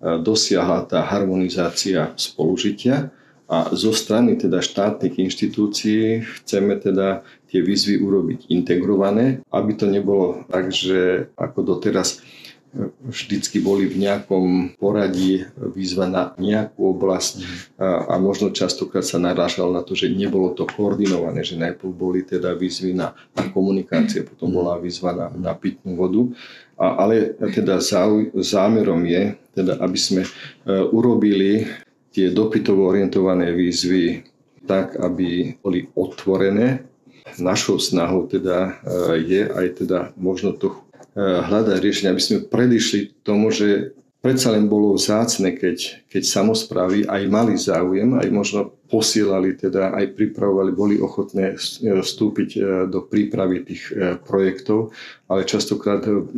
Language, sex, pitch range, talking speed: Slovak, male, 95-105 Hz, 120 wpm